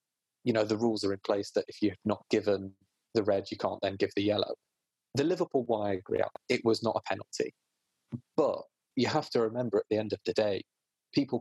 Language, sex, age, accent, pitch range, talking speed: English, male, 30-49, British, 100-125 Hz, 220 wpm